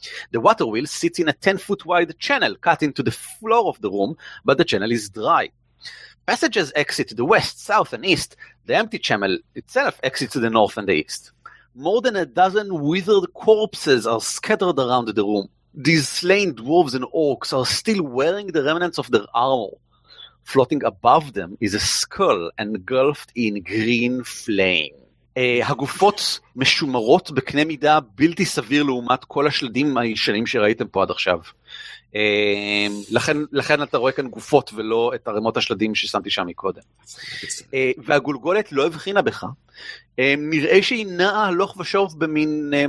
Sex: male